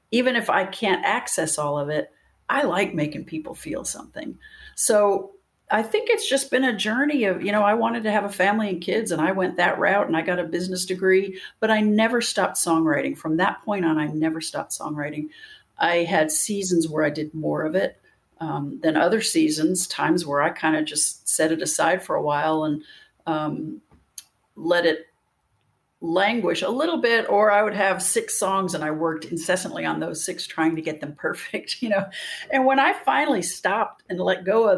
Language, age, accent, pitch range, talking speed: English, 50-69, American, 155-215 Hz, 205 wpm